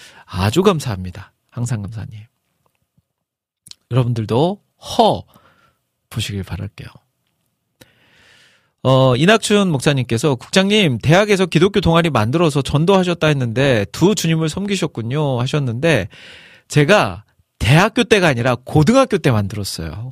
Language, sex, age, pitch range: Korean, male, 40-59, 120-175 Hz